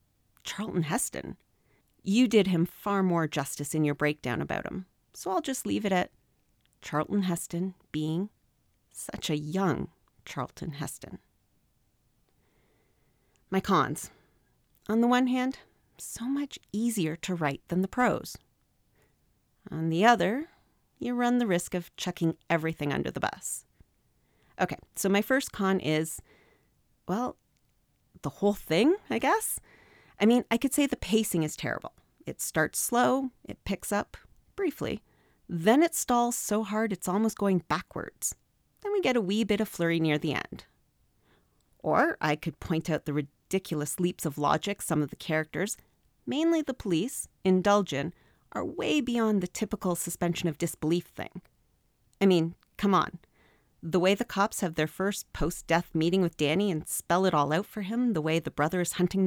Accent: American